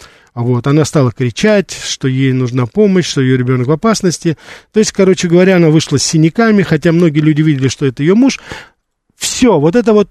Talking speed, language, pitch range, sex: 195 wpm, Russian, 130-170 Hz, male